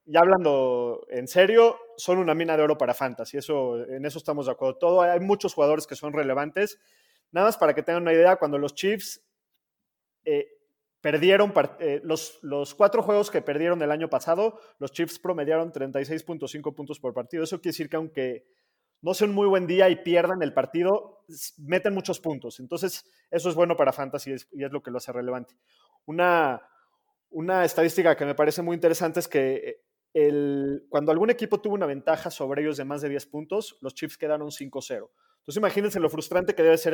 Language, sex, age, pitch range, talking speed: Spanish, male, 30-49, 145-185 Hz, 200 wpm